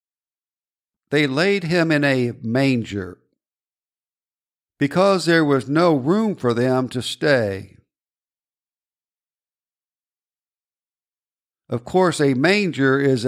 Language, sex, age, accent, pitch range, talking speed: English, male, 60-79, American, 120-160 Hz, 90 wpm